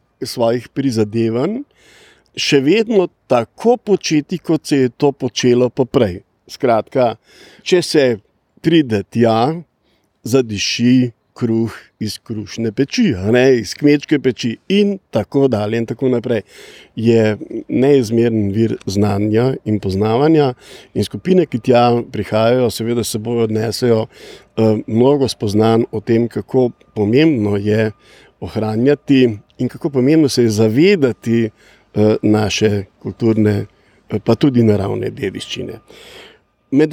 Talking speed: 110 wpm